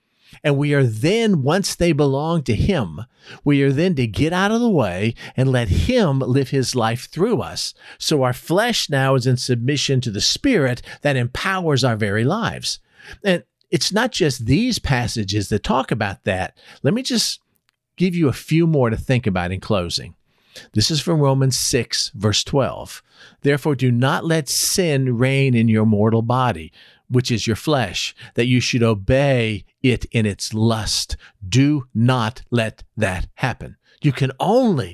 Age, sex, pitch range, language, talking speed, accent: 50-69, male, 110-140 Hz, English, 175 wpm, American